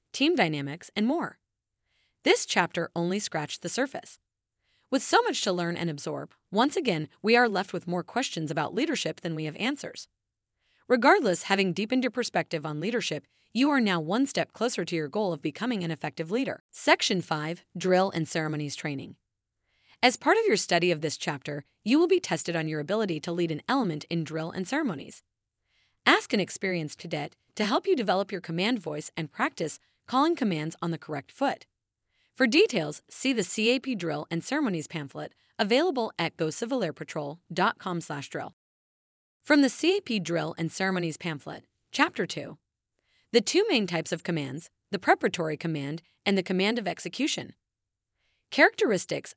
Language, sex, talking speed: English, female, 170 wpm